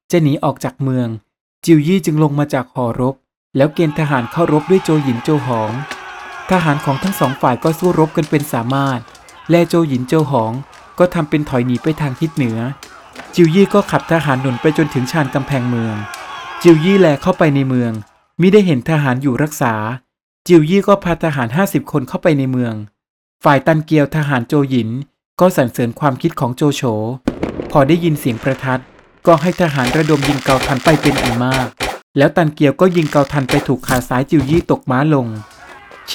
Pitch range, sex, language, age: 130-165 Hz, male, Thai, 20-39